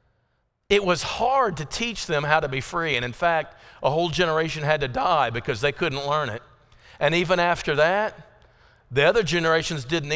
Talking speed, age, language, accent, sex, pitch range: 190 wpm, 50-69, English, American, male, 145-190 Hz